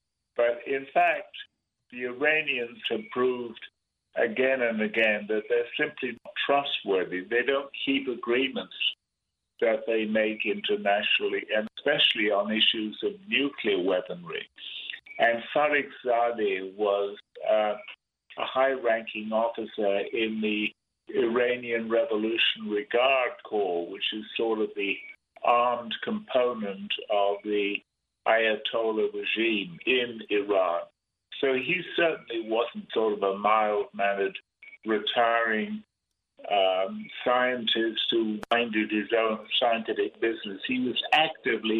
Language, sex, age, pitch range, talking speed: English, male, 60-79, 105-135 Hz, 110 wpm